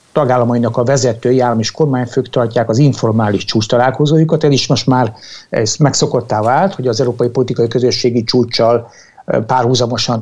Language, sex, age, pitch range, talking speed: Hungarian, male, 60-79, 125-155 Hz, 140 wpm